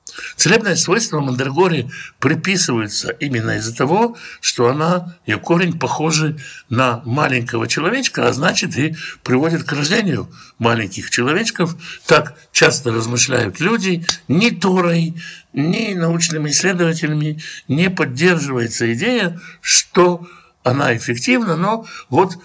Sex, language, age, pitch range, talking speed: male, Russian, 60-79, 125-185 Hz, 105 wpm